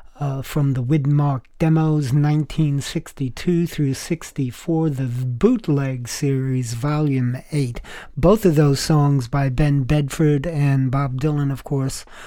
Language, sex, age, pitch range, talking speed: English, male, 50-69, 135-160 Hz, 120 wpm